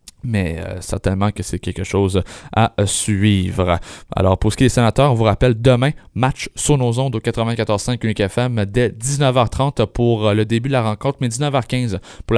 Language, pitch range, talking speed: French, 110-150 Hz, 185 wpm